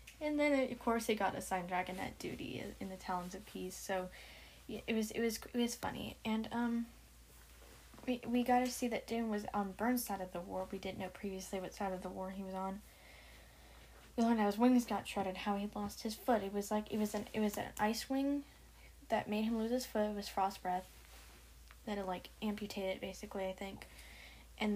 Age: 10-29